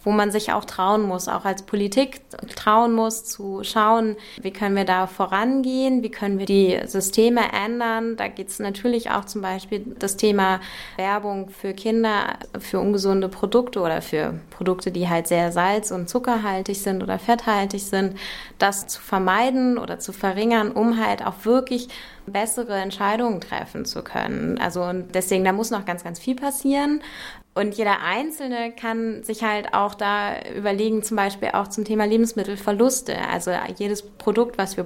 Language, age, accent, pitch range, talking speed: German, 20-39, German, 195-230 Hz, 165 wpm